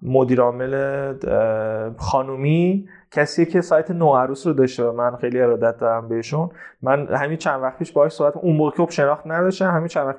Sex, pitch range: male, 125-170 Hz